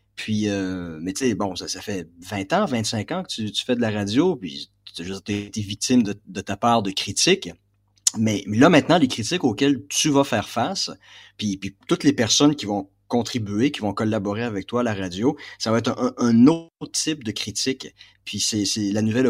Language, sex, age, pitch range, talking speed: French, male, 30-49, 100-135 Hz, 220 wpm